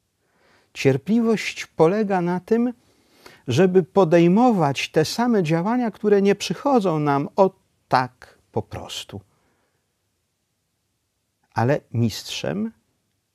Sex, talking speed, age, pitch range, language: male, 85 wpm, 50-69, 105-160 Hz, Polish